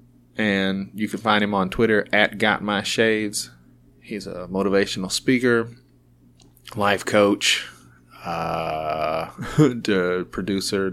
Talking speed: 95 wpm